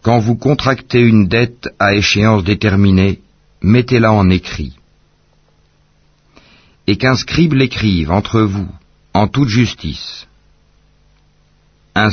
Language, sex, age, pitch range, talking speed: Arabic, male, 60-79, 80-120 Hz, 105 wpm